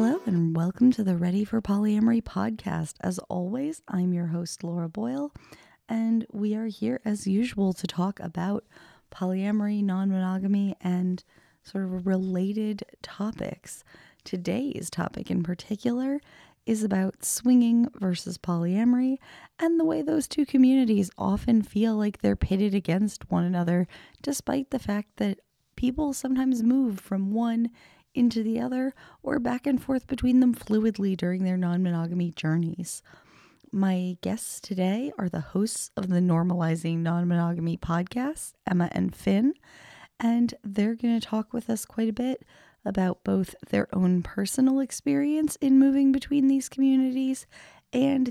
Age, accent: 20-39, American